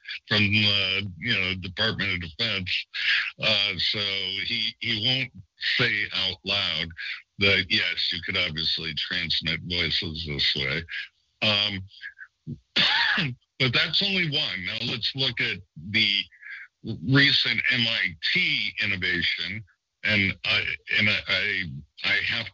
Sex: male